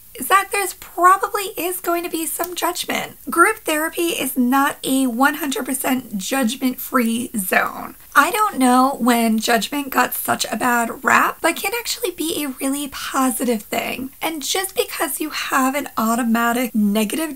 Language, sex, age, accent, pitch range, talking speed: English, female, 20-39, American, 250-325 Hz, 150 wpm